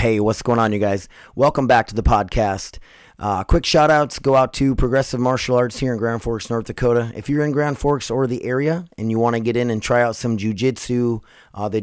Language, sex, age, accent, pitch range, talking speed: English, male, 30-49, American, 105-125 Hz, 245 wpm